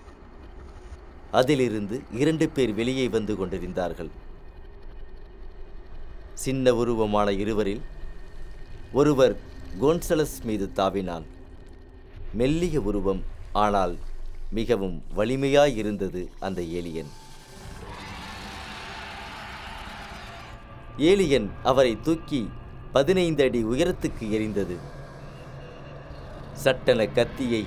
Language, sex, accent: Tamil, male, native